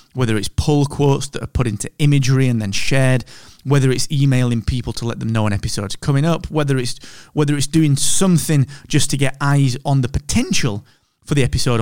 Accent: British